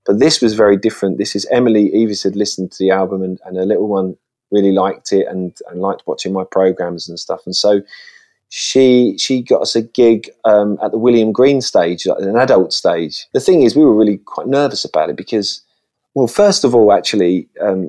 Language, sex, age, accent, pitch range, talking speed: English, male, 30-49, British, 100-120 Hz, 215 wpm